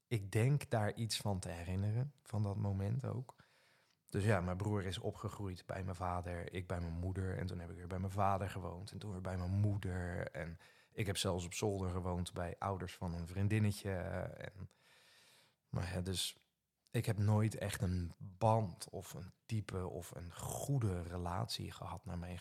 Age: 20-39